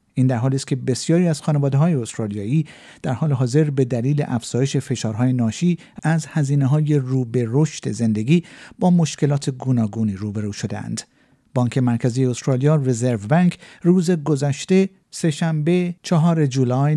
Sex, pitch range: male, 120-155 Hz